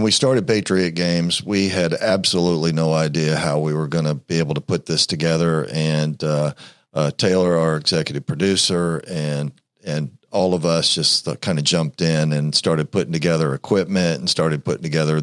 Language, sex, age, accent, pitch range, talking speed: English, male, 50-69, American, 75-85 Hz, 185 wpm